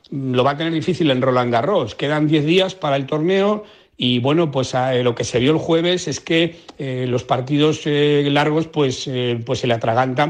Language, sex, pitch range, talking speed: Spanish, male, 125-150 Hz, 210 wpm